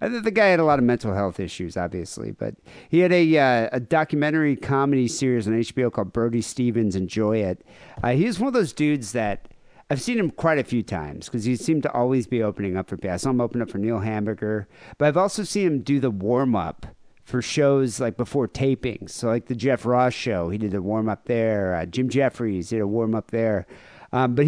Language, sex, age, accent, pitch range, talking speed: English, male, 50-69, American, 105-140 Hz, 230 wpm